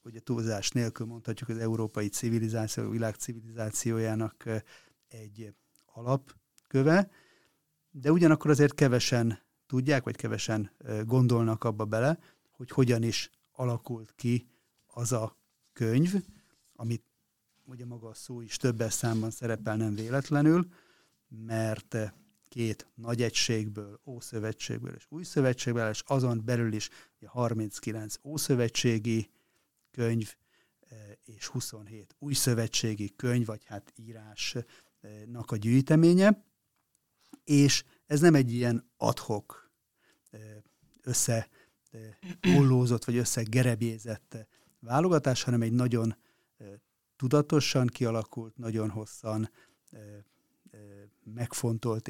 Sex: male